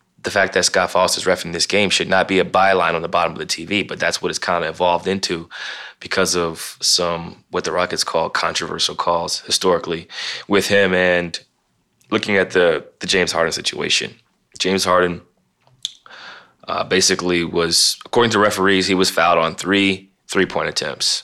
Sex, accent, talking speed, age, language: male, American, 180 wpm, 20-39, English